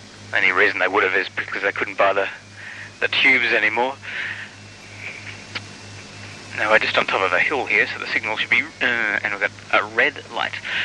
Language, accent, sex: English, Australian, male